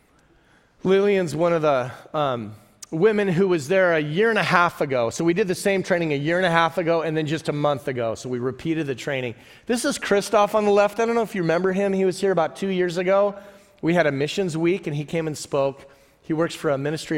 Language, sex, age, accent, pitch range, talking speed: English, male, 40-59, American, 115-155 Hz, 255 wpm